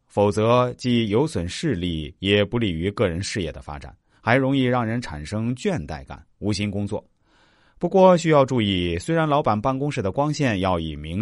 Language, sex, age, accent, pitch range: Chinese, male, 30-49, native, 90-135 Hz